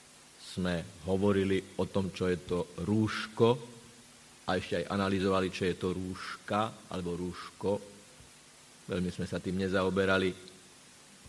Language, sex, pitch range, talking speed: Slovak, male, 95-110 Hz, 120 wpm